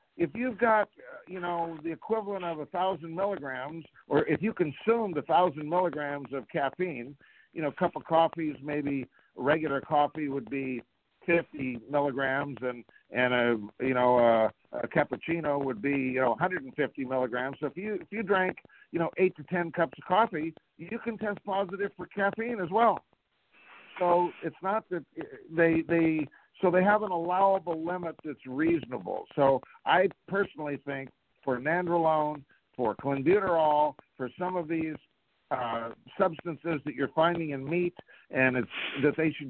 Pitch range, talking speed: 135-175 Hz, 165 wpm